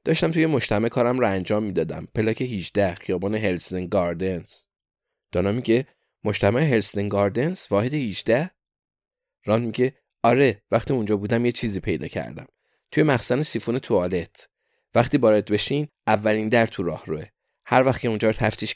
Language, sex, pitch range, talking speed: Persian, male, 100-125 Hz, 140 wpm